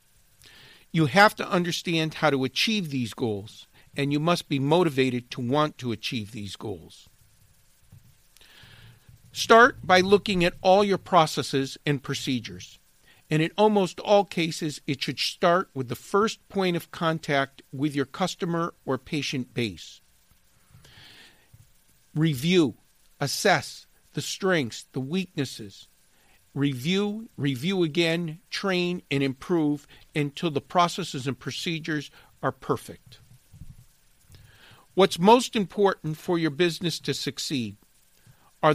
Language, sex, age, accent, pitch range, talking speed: English, male, 50-69, American, 135-180 Hz, 120 wpm